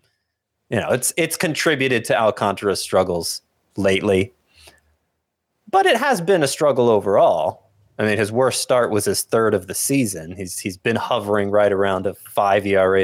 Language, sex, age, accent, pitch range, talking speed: English, male, 30-49, American, 95-145 Hz, 165 wpm